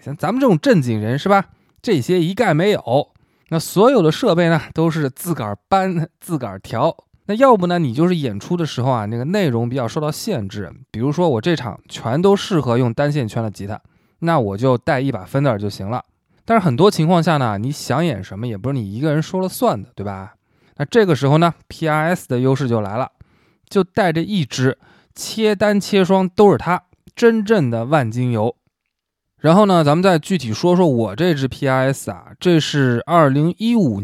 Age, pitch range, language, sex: 20-39, 120-180 Hz, Chinese, male